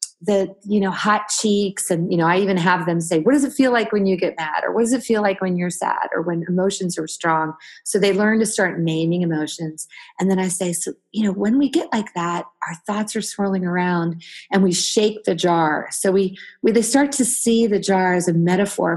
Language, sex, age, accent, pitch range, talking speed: English, female, 30-49, American, 175-215 Hz, 245 wpm